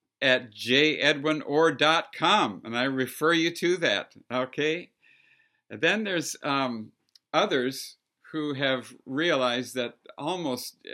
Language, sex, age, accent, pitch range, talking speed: English, male, 60-79, American, 120-155 Hz, 115 wpm